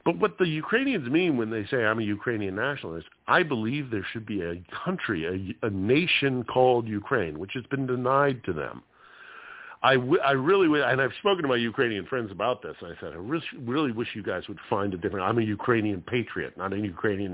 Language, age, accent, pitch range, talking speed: English, 50-69, American, 105-140 Hz, 220 wpm